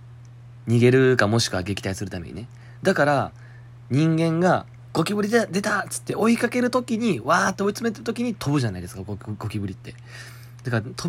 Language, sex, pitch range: Japanese, male, 110-140 Hz